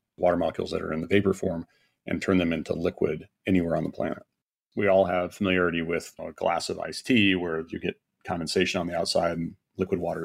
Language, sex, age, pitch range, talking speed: English, male, 40-59, 90-100 Hz, 215 wpm